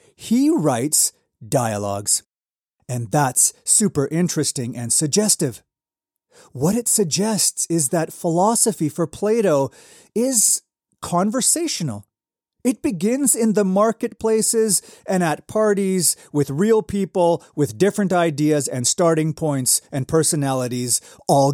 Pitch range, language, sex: 130-215 Hz, English, male